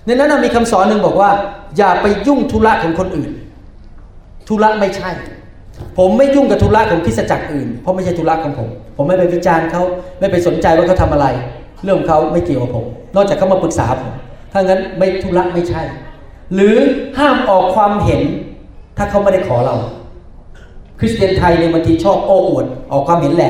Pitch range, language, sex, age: 145-190 Hz, Thai, male, 30-49